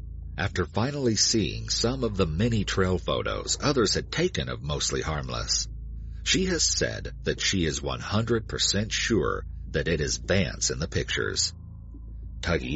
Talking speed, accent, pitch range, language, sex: 145 wpm, American, 65-100 Hz, English, male